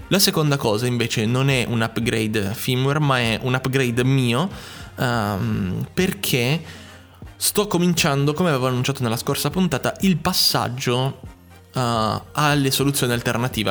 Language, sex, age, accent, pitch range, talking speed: Italian, male, 20-39, native, 105-130 Hz, 125 wpm